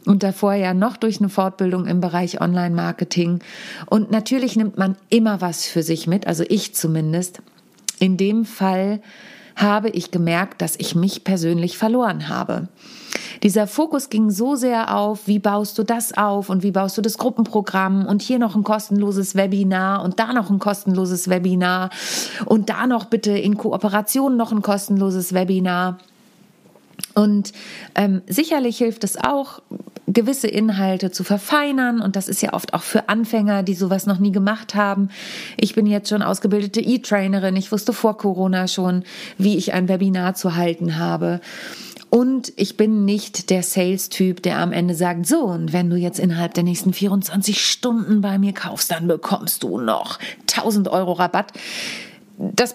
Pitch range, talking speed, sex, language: 185-220 Hz, 165 wpm, female, German